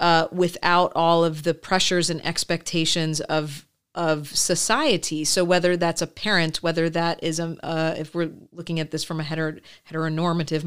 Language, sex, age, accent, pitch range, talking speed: English, female, 40-59, American, 165-190 Hz, 170 wpm